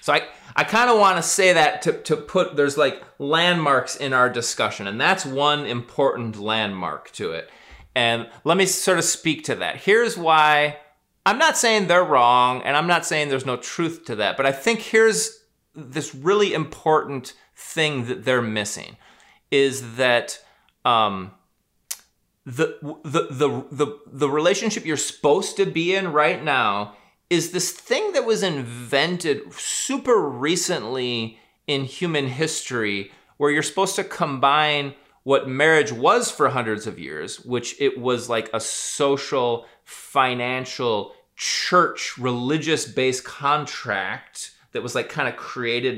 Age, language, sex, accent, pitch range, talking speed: 30-49, English, male, American, 120-165 Hz, 150 wpm